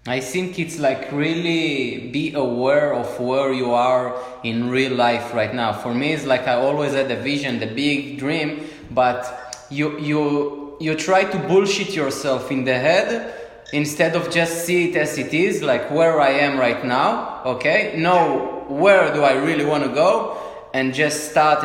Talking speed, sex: 180 wpm, male